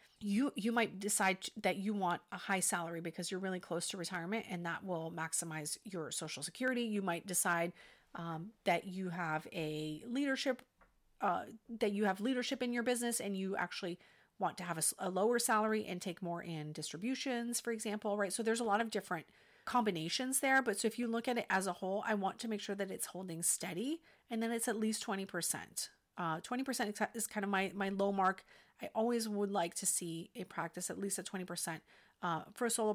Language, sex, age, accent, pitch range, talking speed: English, female, 40-59, American, 175-225 Hz, 210 wpm